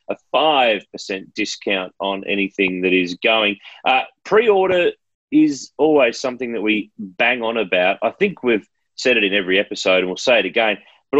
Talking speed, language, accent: 175 wpm, English, Australian